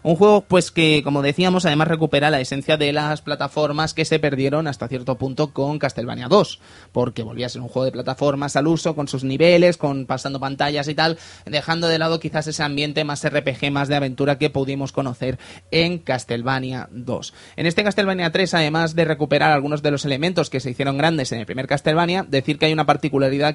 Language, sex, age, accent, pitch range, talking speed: Spanish, male, 20-39, Spanish, 140-175 Hz, 205 wpm